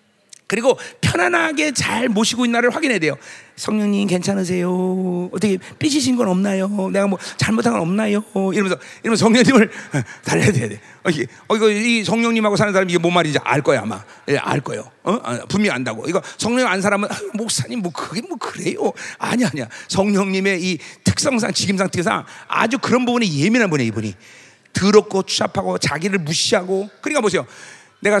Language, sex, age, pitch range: Korean, male, 40-59, 170-215 Hz